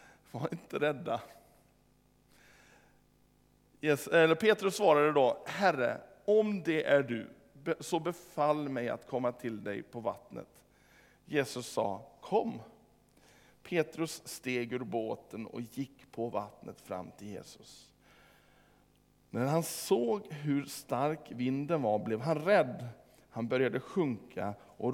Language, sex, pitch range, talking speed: Swedish, male, 115-165 Hz, 115 wpm